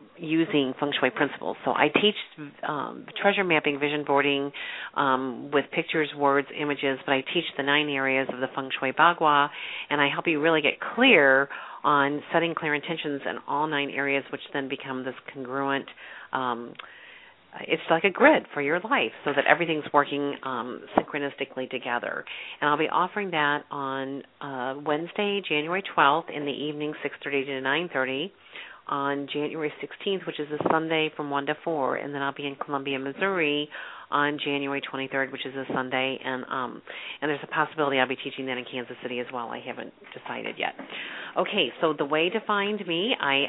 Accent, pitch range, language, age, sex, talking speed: American, 135-155 Hz, English, 40-59, female, 185 wpm